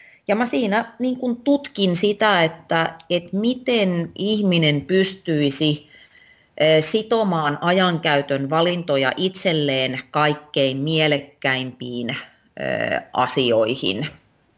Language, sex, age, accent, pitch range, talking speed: Finnish, female, 30-49, native, 145-175 Hz, 65 wpm